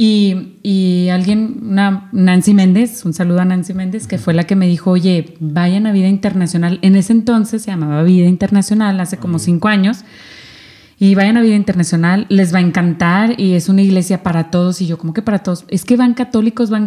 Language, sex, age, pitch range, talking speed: Spanish, female, 30-49, 180-225 Hz, 210 wpm